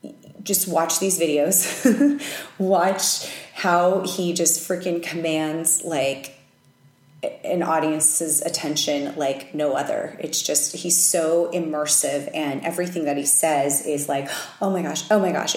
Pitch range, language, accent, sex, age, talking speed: 150-175 Hz, English, American, female, 30-49, 135 wpm